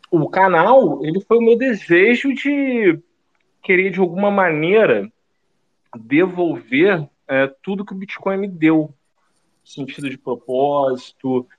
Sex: male